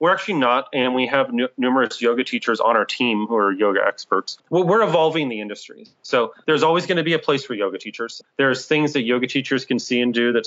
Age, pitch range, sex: 30-49, 115-140 Hz, male